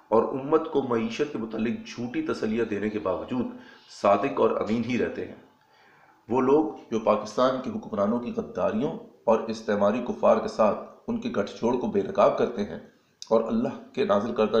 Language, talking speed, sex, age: Urdu, 185 wpm, male, 40-59